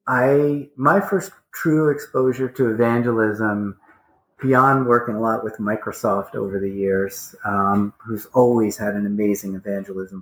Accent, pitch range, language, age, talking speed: American, 105-130 Hz, English, 30-49, 135 wpm